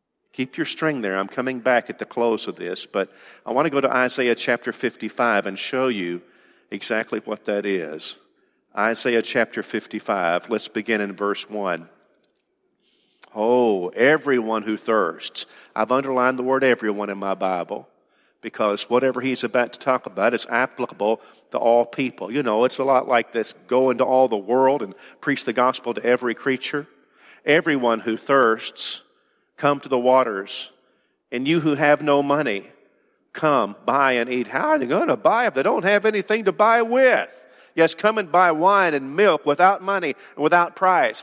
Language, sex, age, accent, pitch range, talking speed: English, male, 50-69, American, 115-145 Hz, 180 wpm